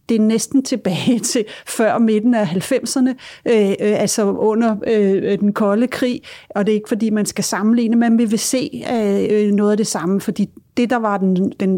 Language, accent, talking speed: Danish, native, 190 wpm